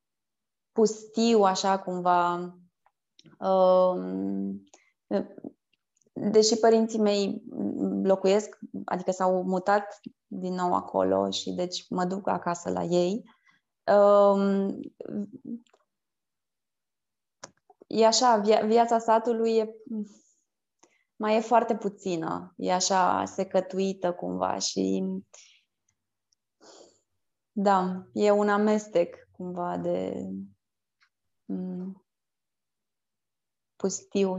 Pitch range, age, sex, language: 180-220 Hz, 20-39, female, Romanian